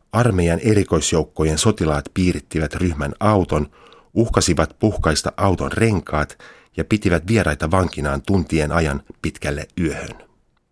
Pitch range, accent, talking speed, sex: 80-95 Hz, native, 100 wpm, male